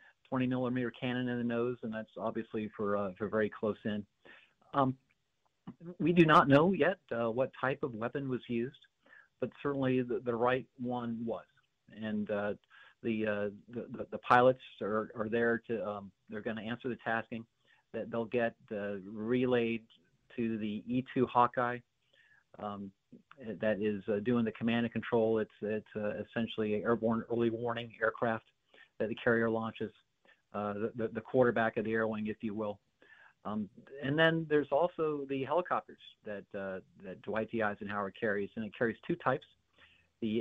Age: 50-69